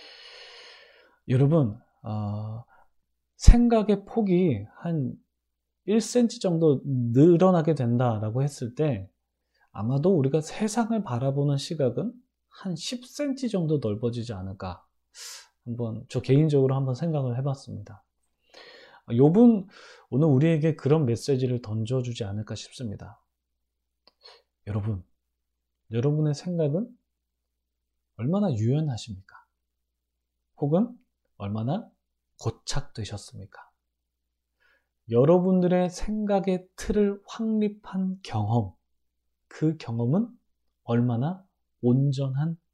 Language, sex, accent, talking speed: English, male, Korean, 75 wpm